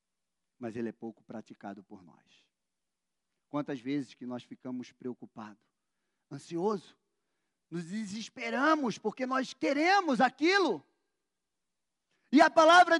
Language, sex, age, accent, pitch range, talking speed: Portuguese, male, 40-59, Brazilian, 230-320 Hz, 105 wpm